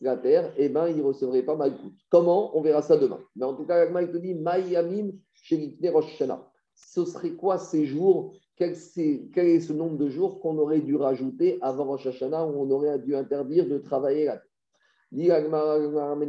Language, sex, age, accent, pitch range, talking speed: French, male, 50-69, French, 140-185 Hz, 200 wpm